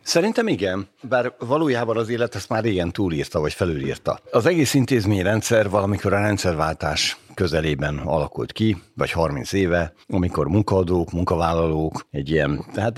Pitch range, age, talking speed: 85-105 Hz, 60-79, 140 wpm